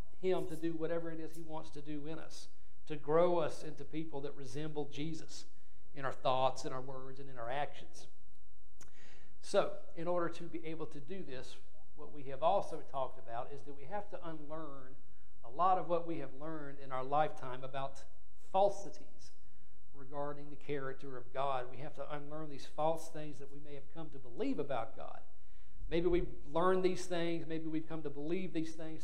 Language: English